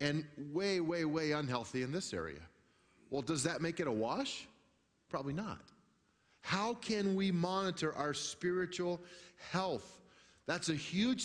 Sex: male